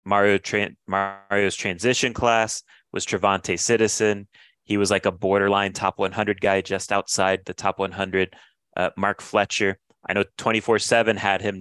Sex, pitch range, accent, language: male, 90-105 Hz, American, English